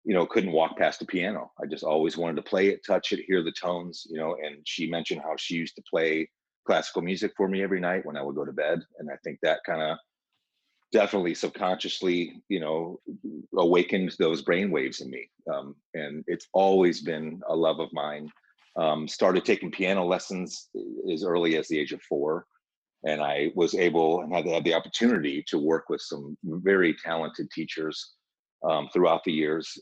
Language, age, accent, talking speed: English, 40-59, American, 195 wpm